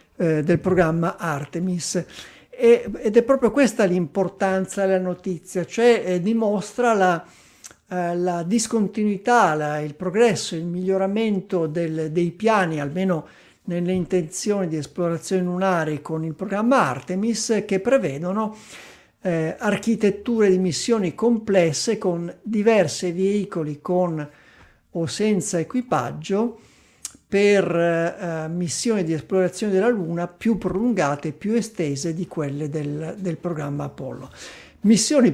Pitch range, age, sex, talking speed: 160-200 Hz, 60-79, male, 115 wpm